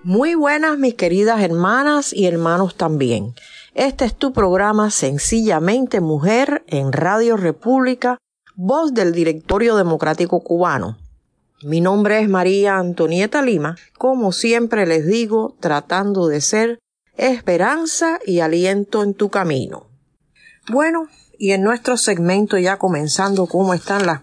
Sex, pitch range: female, 175-230 Hz